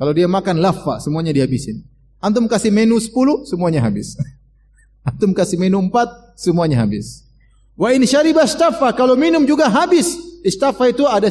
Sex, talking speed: male, 155 wpm